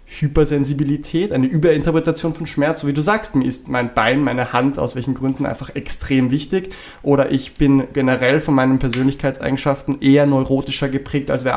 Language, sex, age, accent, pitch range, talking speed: English, male, 20-39, German, 135-165 Hz, 170 wpm